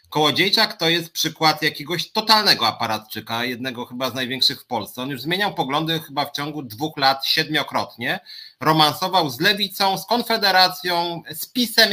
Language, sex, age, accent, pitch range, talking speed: Polish, male, 30-49, native, 130-175 Hz, 150 wpm